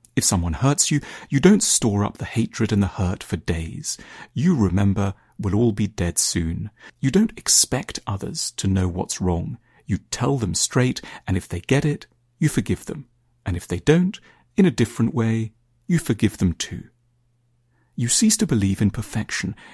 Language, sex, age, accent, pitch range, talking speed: English, male, 40-59, British, 95-125 Hz, 180 wpm